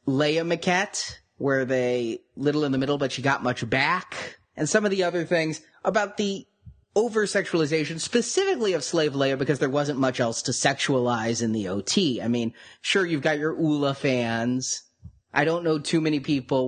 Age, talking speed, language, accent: 30-49, 180 wpm, English, American